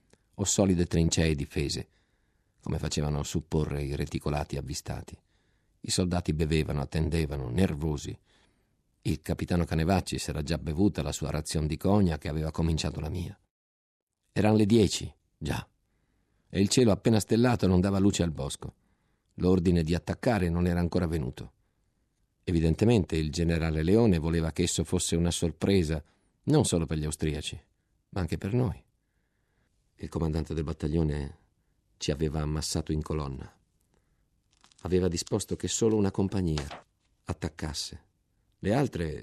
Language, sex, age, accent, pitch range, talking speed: Italian, male, 50-69, native, 80-100 Hz, 140 wpm